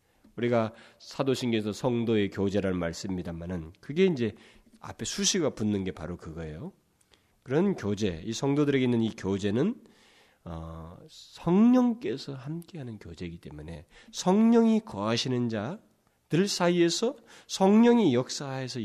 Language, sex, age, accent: Korean, male, 40-59, native